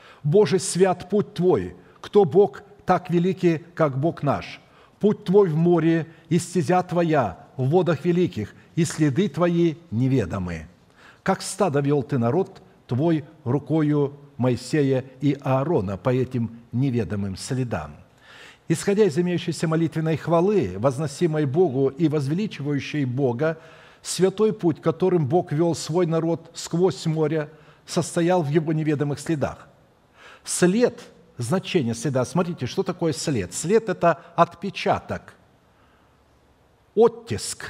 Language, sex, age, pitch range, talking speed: Russian, male, 60-79, 135-180 Hz, 120 wpm